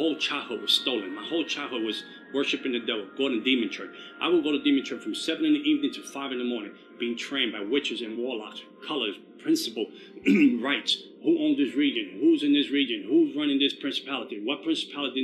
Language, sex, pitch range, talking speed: Dutch, male, 275-340 Hz, 215 wpm